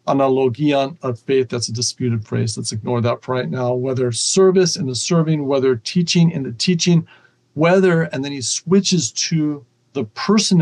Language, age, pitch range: English, 50-69, 120-160 Hz